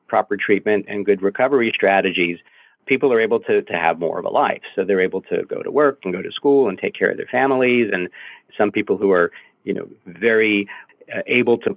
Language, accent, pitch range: English, American, 95-120 Hz